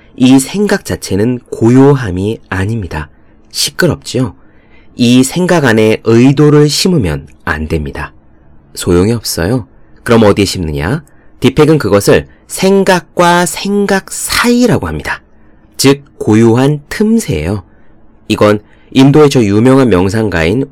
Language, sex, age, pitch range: Korean, male, 30-49, 90-140 Hz